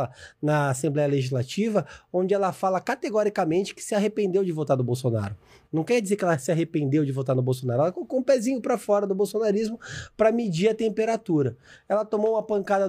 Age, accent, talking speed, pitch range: 20-39, Brazilian, 190 wpm, 150-210 Hz